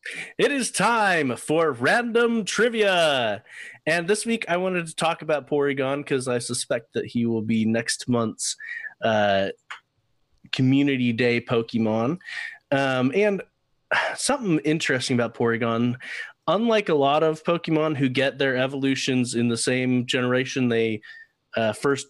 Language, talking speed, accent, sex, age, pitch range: English, 135 wpm, American, male, 30-49, 120-155 Hz